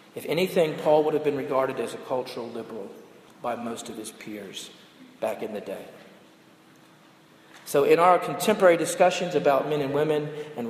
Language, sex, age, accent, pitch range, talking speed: English, male, 50-69, American, 135-175 Hz, 170 wpm